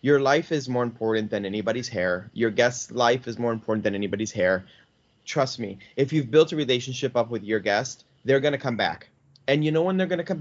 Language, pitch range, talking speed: English, 115-145 Hz, 225 wpm